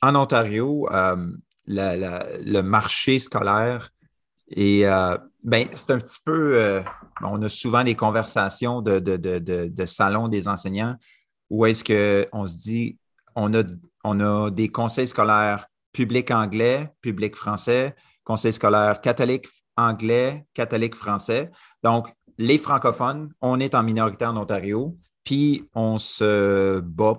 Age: 40-59